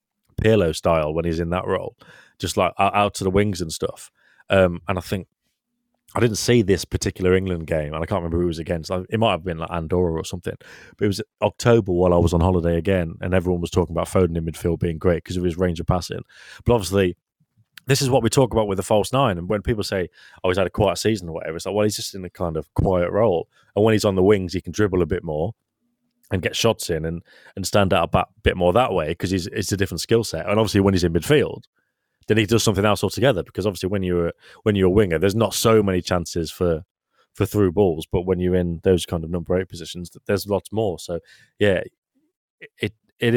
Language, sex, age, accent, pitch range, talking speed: English, male, 30-49, British, 85-105 Hz, 250 wpm